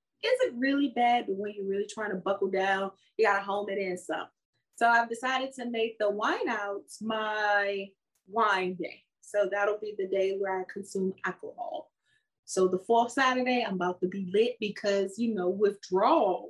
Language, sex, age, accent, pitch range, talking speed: English, female, 20-39, American, 195-255 Hz, 190 wpm